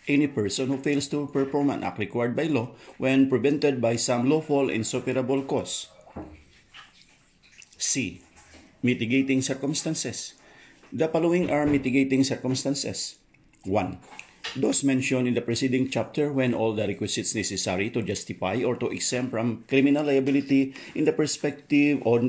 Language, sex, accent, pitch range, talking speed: English, male, Filipino, 105-135 Hz, 135 wpm